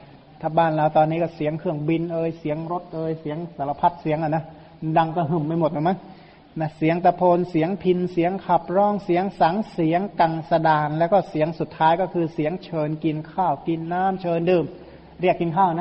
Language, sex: Thai, male